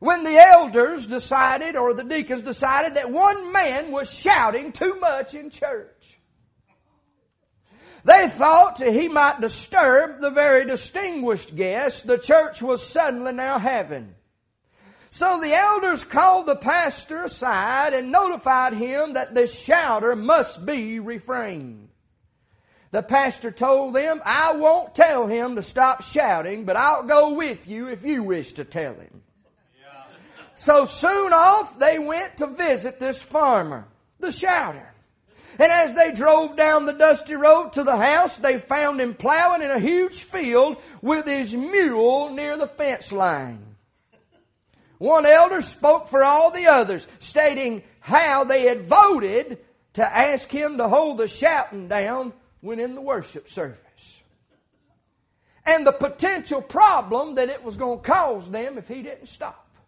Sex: male